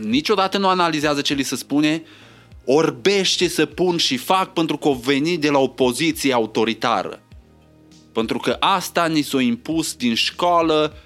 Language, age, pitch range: Romanian, 30-49, 105-160 Hz